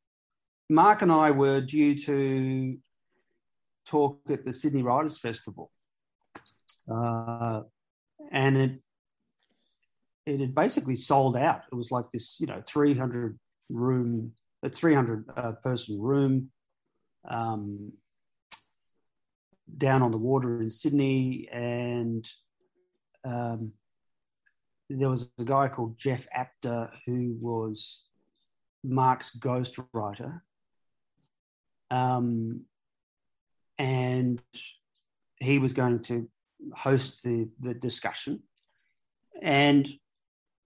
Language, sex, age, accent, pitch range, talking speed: English, male, 40-59, Australian, 120-140 Hz, 95 wpm